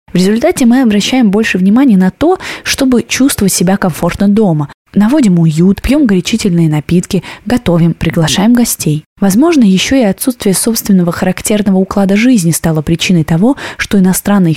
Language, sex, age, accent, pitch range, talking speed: Russian, female, 20-39, native, 175-225 Hz, 140 wpm